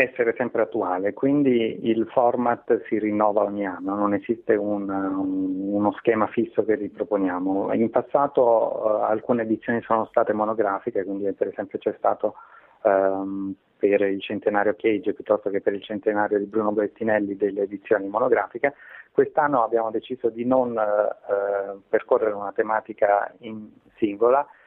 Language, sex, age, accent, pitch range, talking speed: Italian, male, 30-49, native, 100-120 Hz, 130 wpm